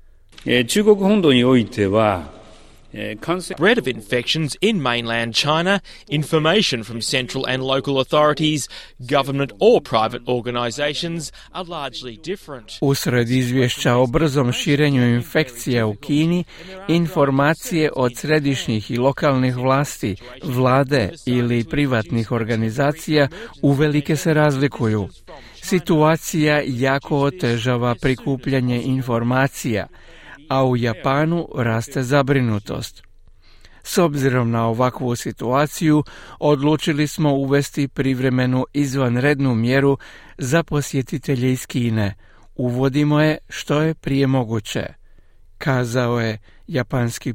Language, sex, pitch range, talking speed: Croatian, male, 120-150 Hz, 70 wpm